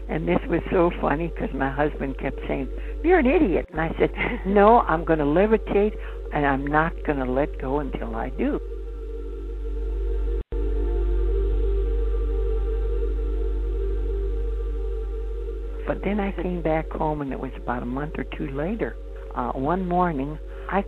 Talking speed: 145 wpm